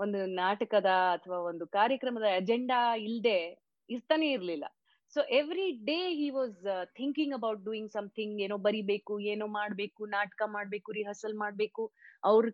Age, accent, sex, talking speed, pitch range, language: 30-49, native, female, 130 wpm, 200-255 Hz, Kannada